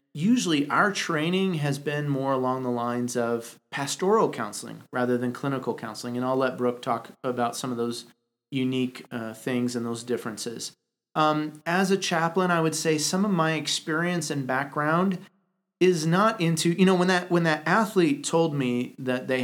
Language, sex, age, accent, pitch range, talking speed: English, male, 30-49, American, 125-170 Hz, 180 wpm